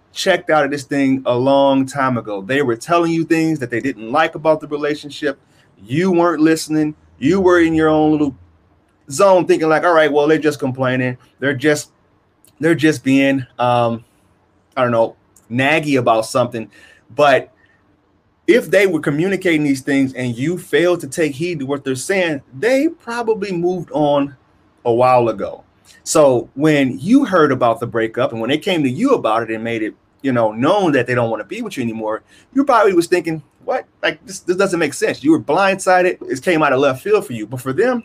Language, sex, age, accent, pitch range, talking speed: English, male, 30-49, American, 125-175 Hz, 205 wpm